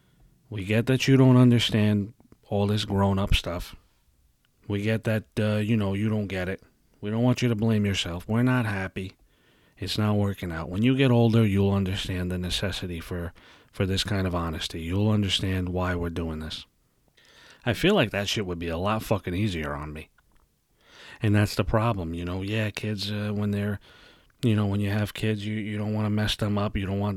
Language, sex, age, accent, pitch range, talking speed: English, male, 30-49, American, 100-130 Hz, 210 wpm